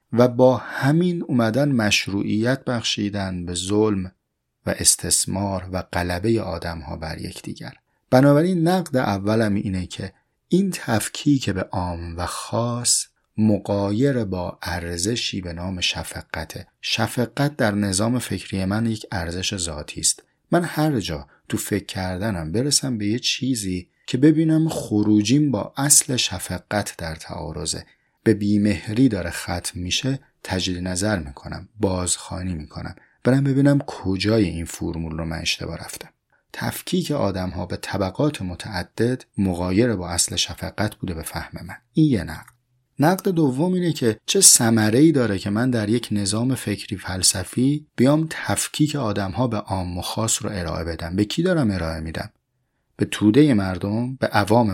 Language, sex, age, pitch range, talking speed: Persian, male, 30-49, 90-125 Hz, 140 wpm